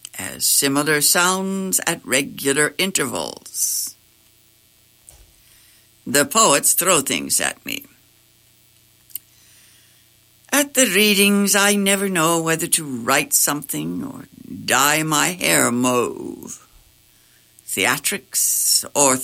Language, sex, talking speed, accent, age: English, female, 90 wpm, American, 60-79